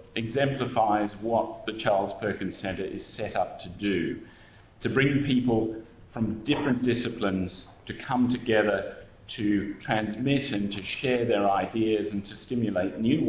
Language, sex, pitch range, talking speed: English, male, 100-125 Hz, 140 wpm